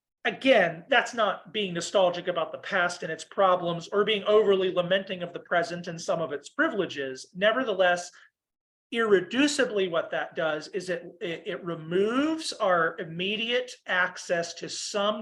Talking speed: 150 wpm